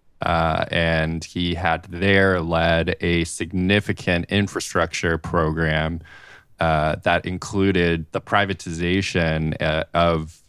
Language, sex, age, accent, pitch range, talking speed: English, male, 20-39, American, 80-95 Hz, 95 wpm